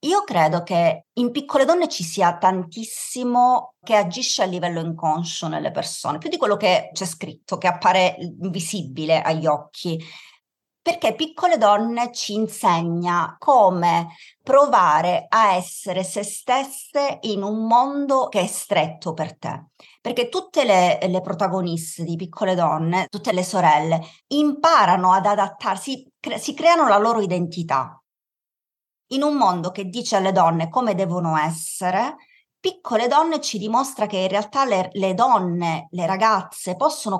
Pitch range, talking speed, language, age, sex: 175-240 Hz, 140 wpm, Italian, 30-49, female